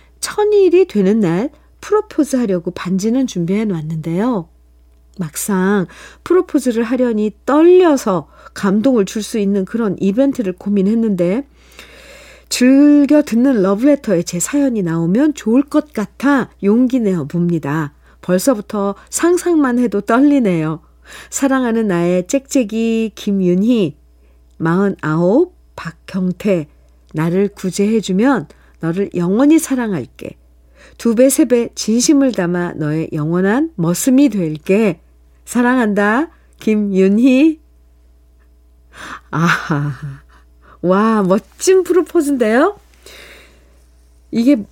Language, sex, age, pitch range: Korean, female, 50-69, 180-255 Hz